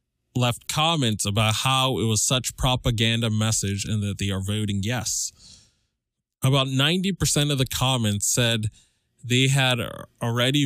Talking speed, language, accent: 135 wpm, English, American